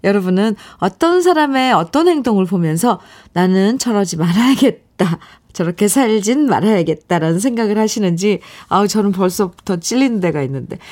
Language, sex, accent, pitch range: Korean, female, native, 175-240 Hz